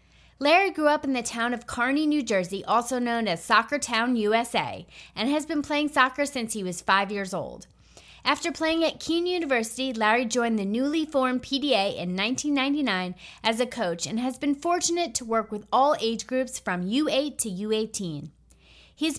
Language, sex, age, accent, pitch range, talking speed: English, female, 30-49, American, 215-285 Hz, 180 wpm